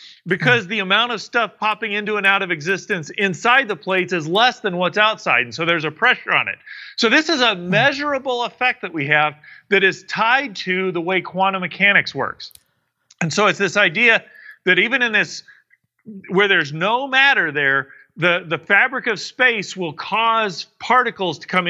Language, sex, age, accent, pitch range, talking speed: English, male, 40-59, American, 180-225 Hz, 190 wpm